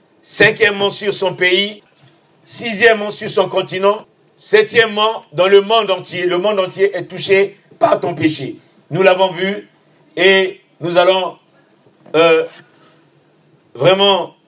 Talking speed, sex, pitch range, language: 120 wpm, male, 175-225 Hz, French